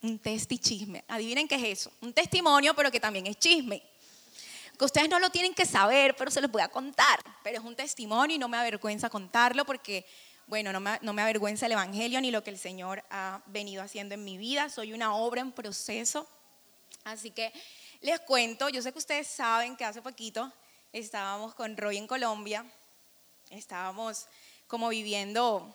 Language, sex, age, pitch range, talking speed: Spanish, female, 20-39, 215-280 Hz, 185 wpm